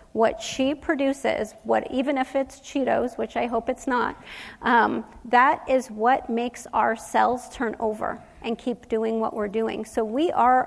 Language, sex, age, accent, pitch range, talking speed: English, female, 40-59, American, 230-260 Hz, 175 wpm